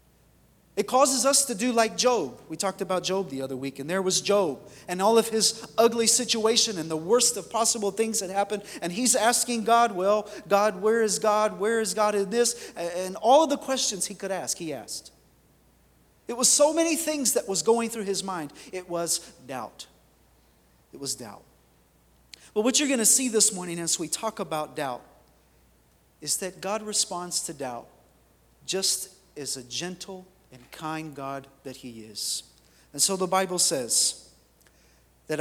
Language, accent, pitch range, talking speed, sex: English, American, 150-215 Hz, 185 wpm, male